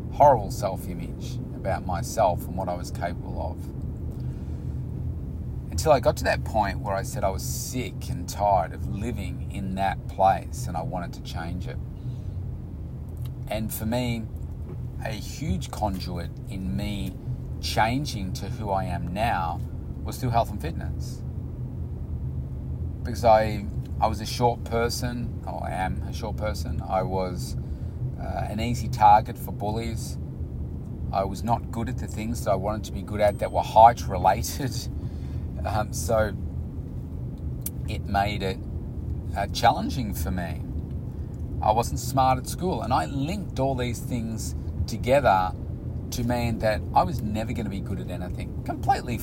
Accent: Australian